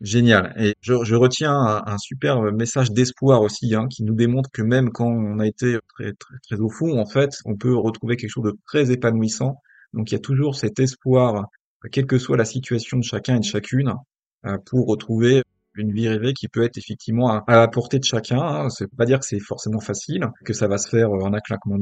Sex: male